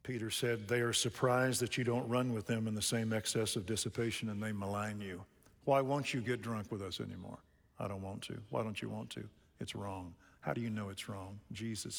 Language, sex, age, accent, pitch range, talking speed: English, male, 50-69, American, 100-125 Hz, 235 wpm